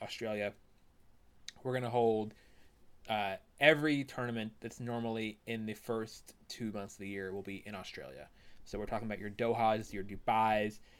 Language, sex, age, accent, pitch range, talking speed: English, male, 20-39, American, 105-120 Hz, 160 wpm